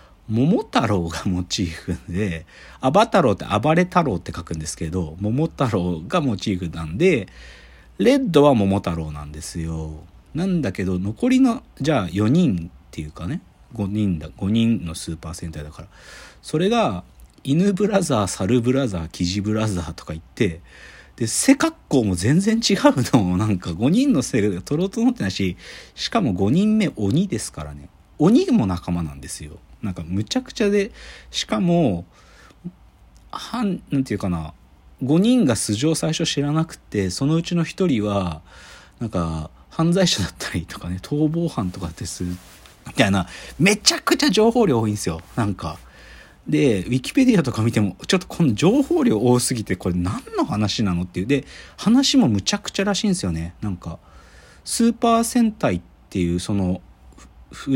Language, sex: Japanese, male